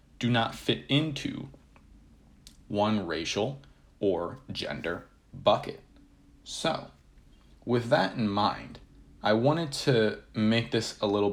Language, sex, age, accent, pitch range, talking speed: English, male, 30-49, American, 90-120 Hz, 110 wpm